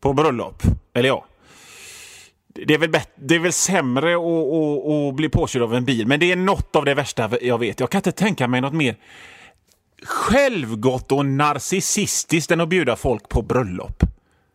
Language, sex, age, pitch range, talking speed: Swedish, male, 30-49, 115-170 Hz, 190 wpm